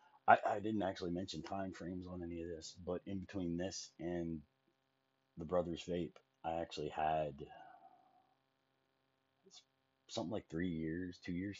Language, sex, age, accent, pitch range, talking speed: English, male, 30-49, American, 75-105 Hz, 145 wpm